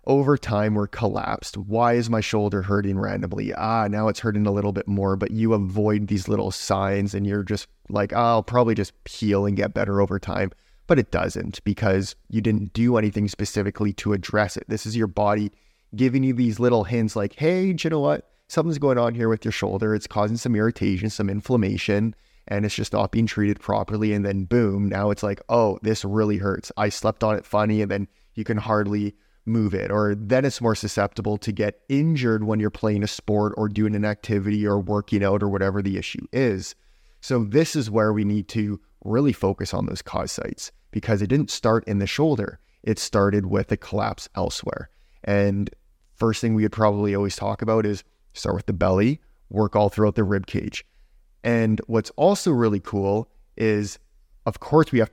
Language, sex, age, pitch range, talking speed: English, male, 20-39, 100-110 Hz, 200 wpm